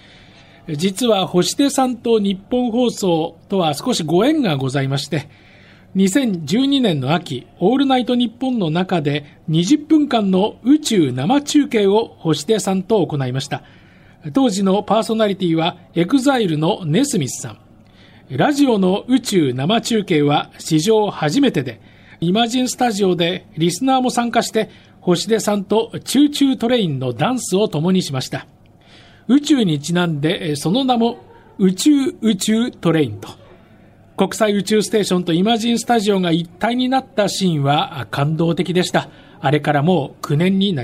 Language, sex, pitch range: Japanese, male, 150-235 Hz